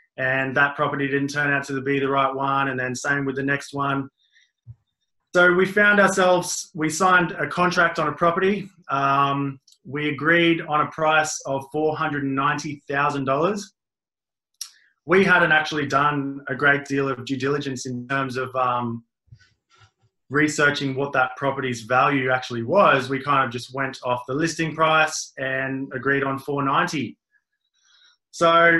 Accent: Australian